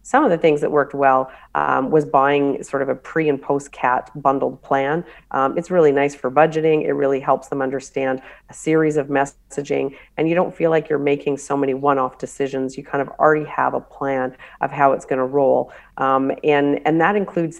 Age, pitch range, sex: 40-59, 135-150 Hz, female